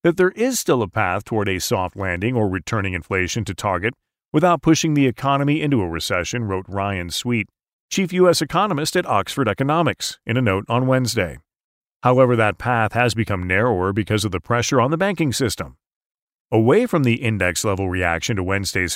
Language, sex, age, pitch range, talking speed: English, male, 40-59, 105-155 Hz, 180 wpm